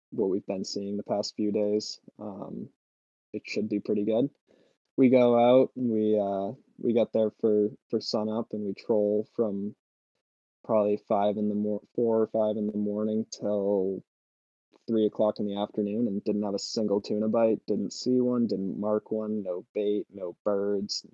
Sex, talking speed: male, 185 wpm